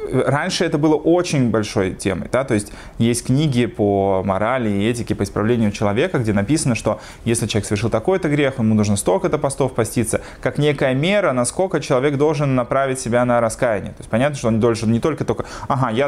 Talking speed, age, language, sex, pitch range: 195 wpm, 20-39, Russian, male, 110-130 Hz